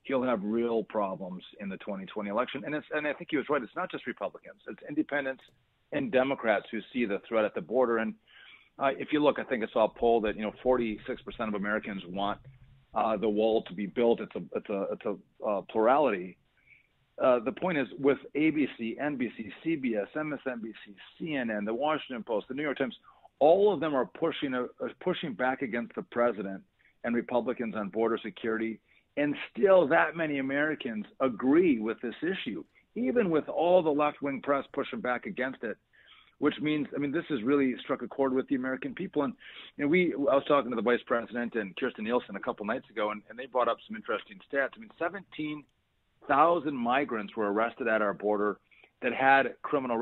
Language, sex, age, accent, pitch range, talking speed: English, male, 40-59, American, 115-150 Hz, 200 wpm